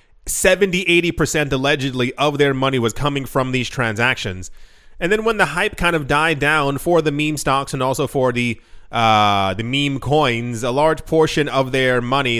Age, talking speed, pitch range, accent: 30-49, 185 wpm, 125-160 Hz, American